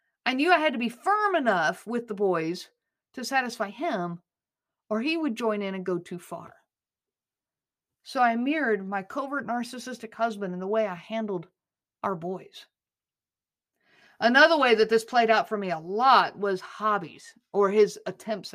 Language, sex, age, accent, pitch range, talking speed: English, female, 50-69, American, 205-275 Hz, 170 wpm